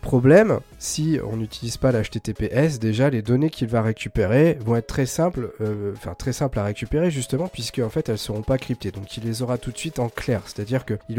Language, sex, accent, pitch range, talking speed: French, male, French, 115-145 Hz, 220 wpm